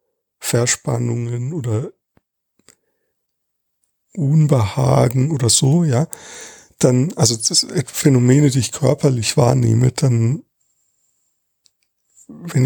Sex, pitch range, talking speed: male, 125-165 Hz, 75 wpm